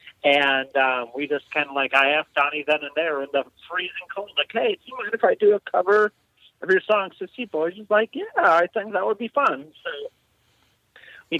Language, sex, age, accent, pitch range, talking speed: English, male, 40-59, American, 130-155 Hz, 230 wpm